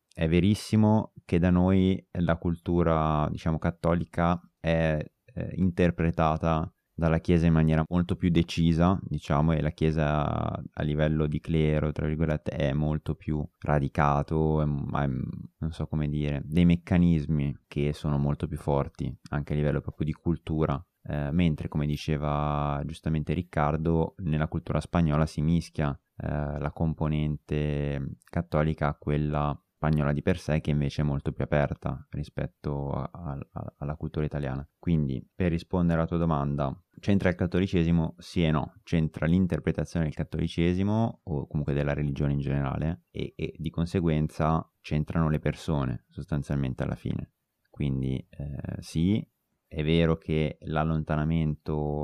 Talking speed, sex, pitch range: 140 wpm, male, 75-85 Hz